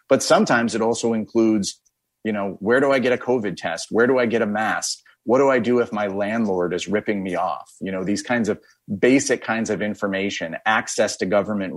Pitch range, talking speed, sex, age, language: 95-120 Hz, 220 wpm, male, 30-49, English